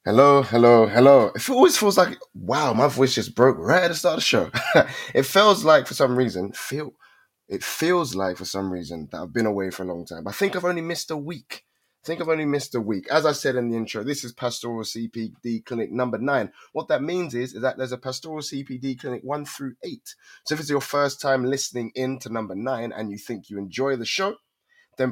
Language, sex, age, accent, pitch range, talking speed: English, male, 20-39, British, 110-140 Hz, 240 wpm